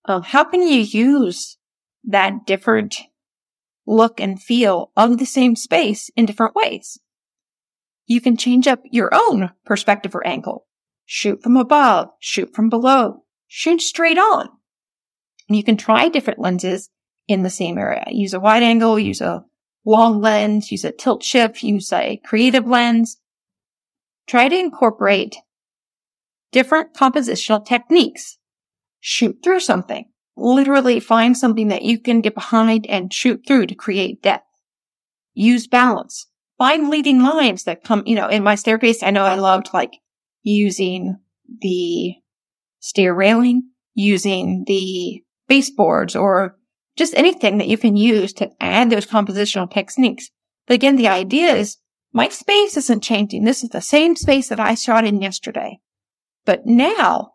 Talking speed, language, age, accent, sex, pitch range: 145 wpm, English, 30-49, American, female, 205-255 Hz